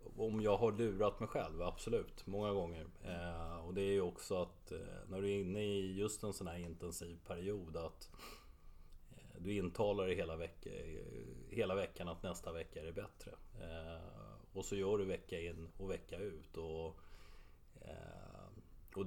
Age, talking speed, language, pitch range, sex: 30-49, 150 wpm, Swedish, 80-95 Hz, male